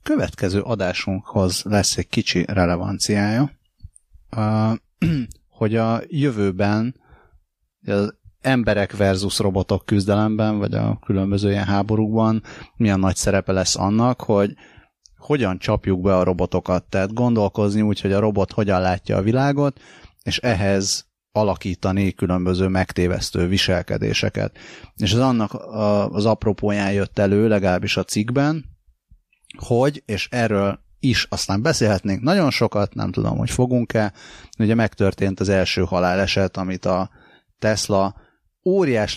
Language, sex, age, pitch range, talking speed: Hungarian, male, 30-49, 95-110 Hz, 120 wpm